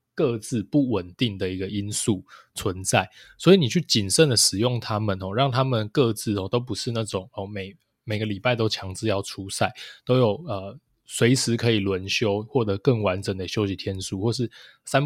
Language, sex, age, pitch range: Chinese, male, 20-39, 100-125 Hz